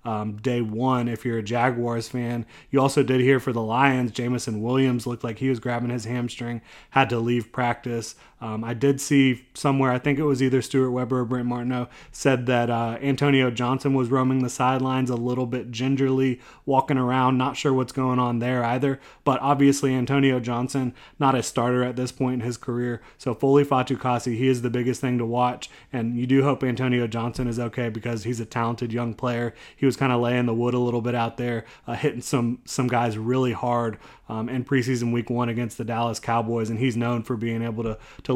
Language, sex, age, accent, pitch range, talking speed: English, male, 30-49, American, 120-135 Hz, 215 wpm